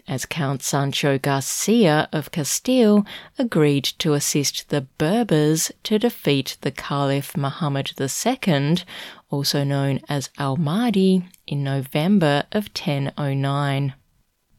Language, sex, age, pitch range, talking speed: English, female, 30-49, 140-180 Hz, 105 wpm